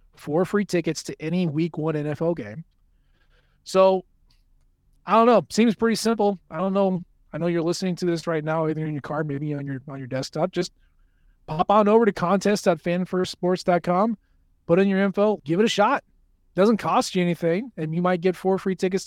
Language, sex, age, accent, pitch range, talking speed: English, male, 20-39, American, 135-195 Hz, 200 wpm